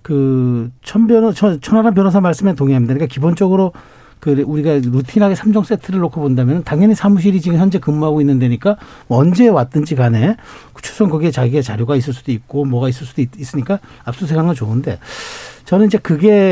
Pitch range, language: 140-210 Hz, Korean